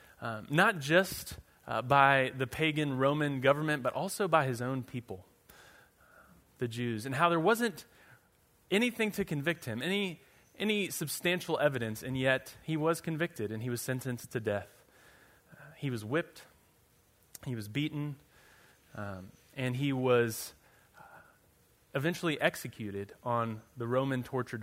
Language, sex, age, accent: English, male, 30-49, American